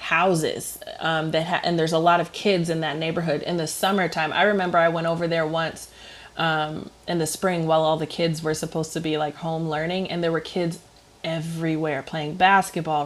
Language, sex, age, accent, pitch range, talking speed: English, female, 20-39, American, 160-180 Hz, 200 wpm